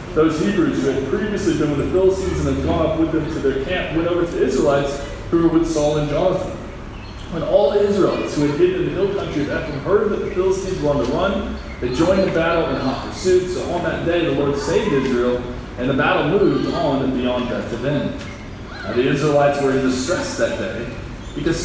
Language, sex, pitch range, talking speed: English, male, 130-165 Hz, 225 wpm